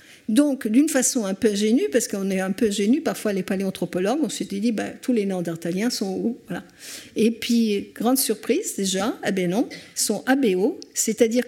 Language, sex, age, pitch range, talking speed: French, female, 50-69, 200-270 Hz, 190 wpm